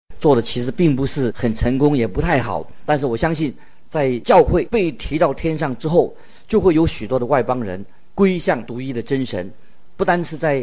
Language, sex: Chinese, male